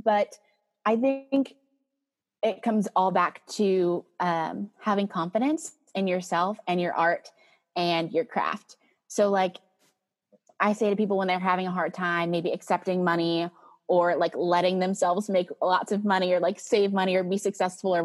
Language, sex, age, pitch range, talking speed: English, female, 20-39, 180-220 Hz, 165 wpm